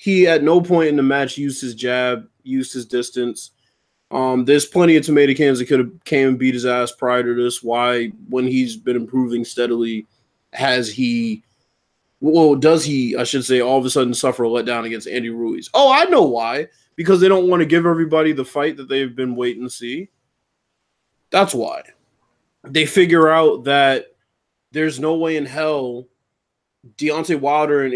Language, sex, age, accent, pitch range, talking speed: English, male, 20-39, American, 125-150 Hz, 185 wpm